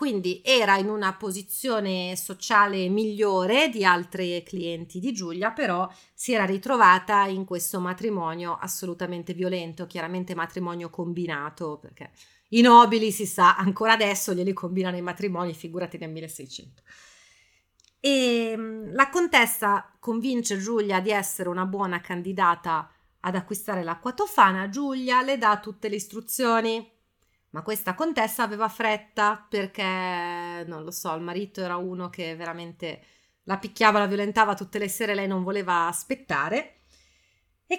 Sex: female